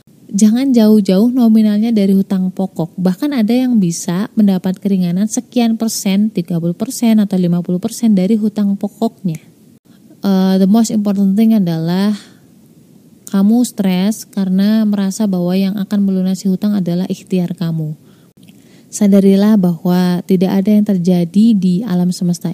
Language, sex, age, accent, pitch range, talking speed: Indonesian, female, 20-39, native, 180-210 Hz, 130 wpm